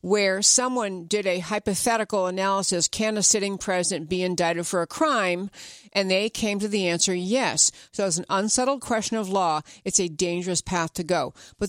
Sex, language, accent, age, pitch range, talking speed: female, English, American, 50-69, 180-230 Hz, 185 wpm